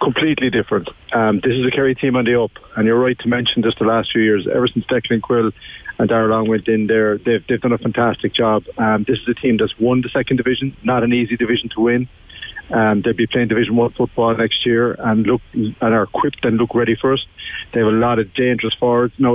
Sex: male